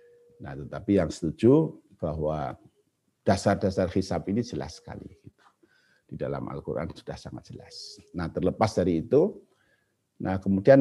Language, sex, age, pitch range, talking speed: Indonesian, male, 50-69, 85-120 Hz, 120 wpm